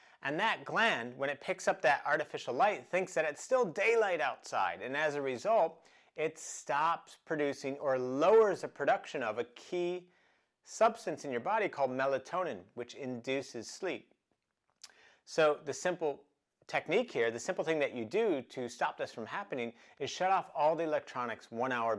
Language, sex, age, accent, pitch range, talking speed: English, male, 40-59, American, 120-180 Hz, 170 wpm